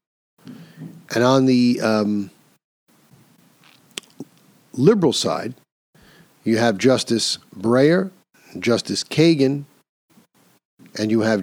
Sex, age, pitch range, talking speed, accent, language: male, 50-69, 110-140 Hz, 80 wpm, American, English